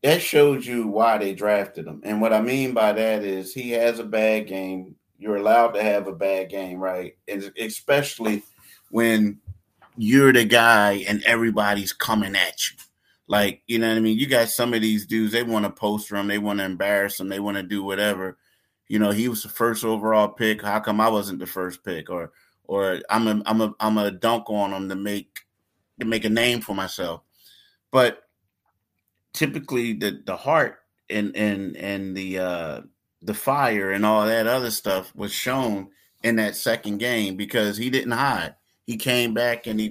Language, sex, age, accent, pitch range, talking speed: English, male, 30-49, American, 100-115 Hz, 195 wpm